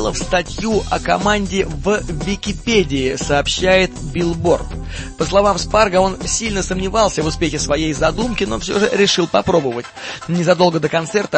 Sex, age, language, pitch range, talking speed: male, 20-39, Russian, 155-185 Hz, 135 wpm